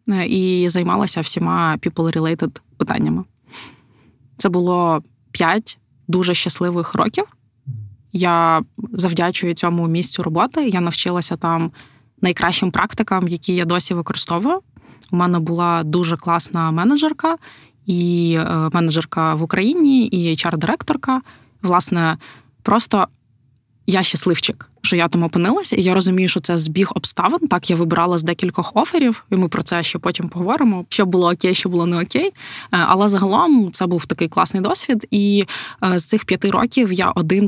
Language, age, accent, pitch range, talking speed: Ukrainian, 20-39, native, 170-195 Hz, 140 wpm